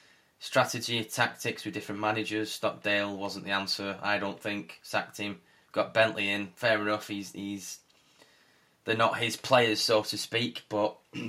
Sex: male